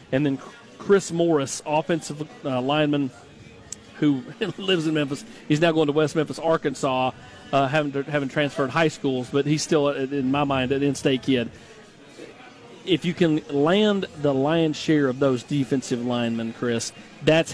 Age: 40-59